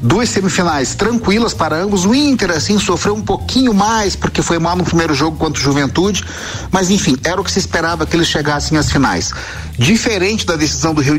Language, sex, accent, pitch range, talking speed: Portuguese, male, Brazilian, 140-195 Hz, 200 wpm